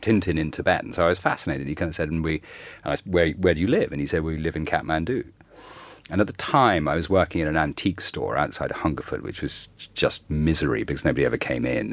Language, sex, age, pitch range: English, male, 40-59, 80-100 Hz